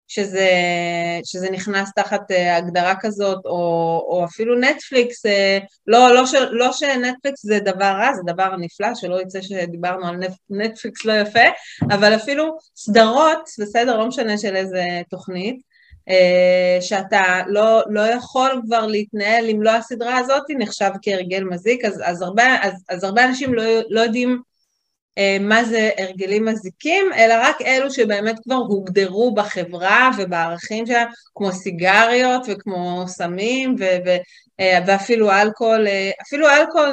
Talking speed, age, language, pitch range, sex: 130 wpm, 30-49, Hebrew, 190-235 Hz, female